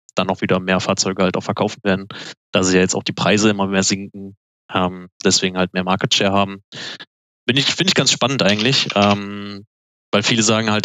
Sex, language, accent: male, German, German